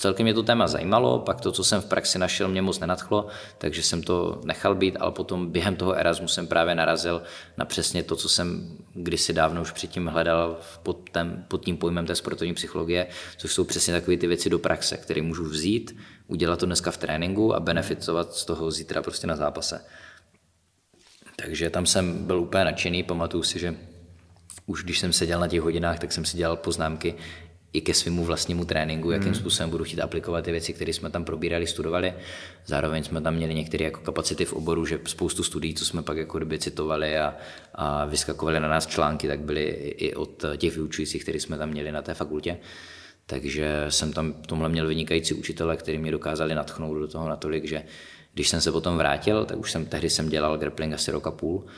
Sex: male